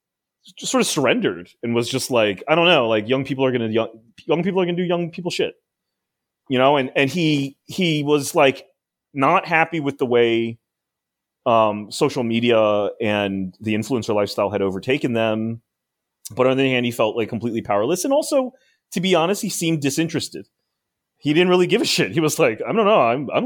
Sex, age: male, 30-49